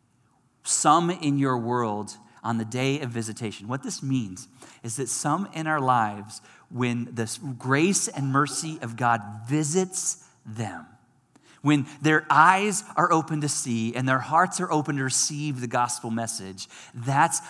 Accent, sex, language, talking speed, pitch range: American, male, English, 155 wpm, 120-155 Hz